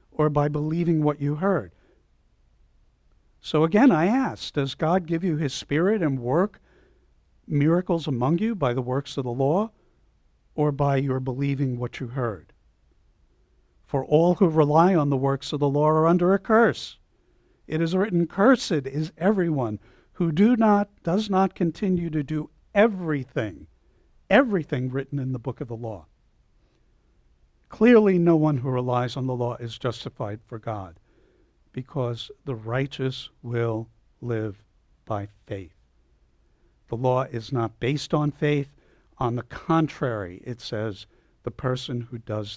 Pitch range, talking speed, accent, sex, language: 95-155 Hz, 145 wpm, American, male, English